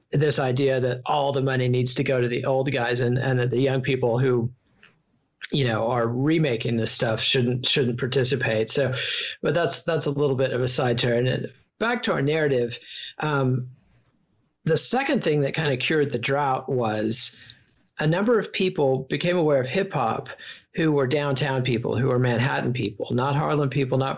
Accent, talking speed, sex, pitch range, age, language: American, 190 wpm, male, 125-145 Hz, 40-59, English